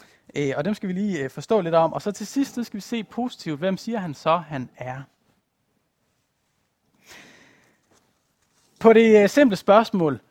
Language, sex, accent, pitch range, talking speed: Danish, male, native, 145-210 Hz, 150 wpm